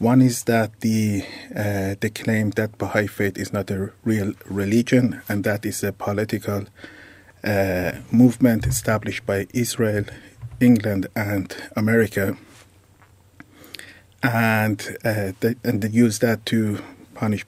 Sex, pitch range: male, 100-115 Hz